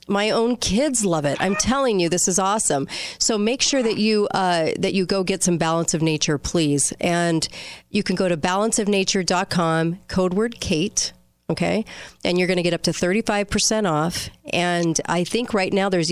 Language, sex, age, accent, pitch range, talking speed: English, female, 40-59, American, 160-205 Hz, 190 wpm